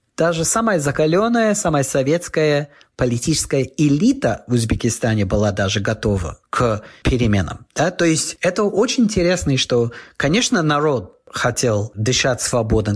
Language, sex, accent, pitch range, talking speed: Russian, male, native, 125-170 Hz, 115 wpm